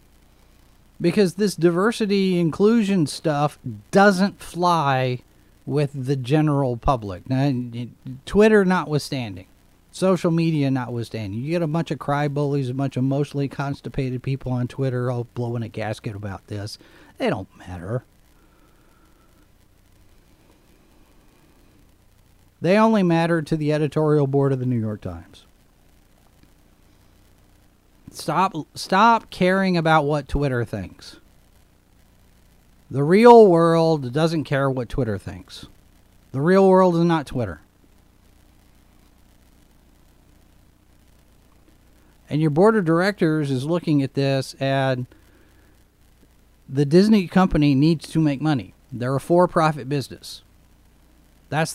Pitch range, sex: 100-160 Hz, male